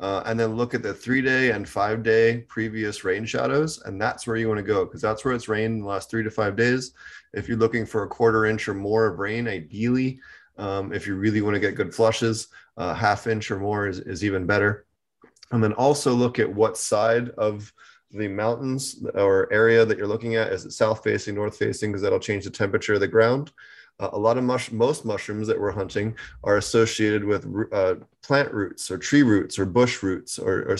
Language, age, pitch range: English, 20-39, 100-115 Hz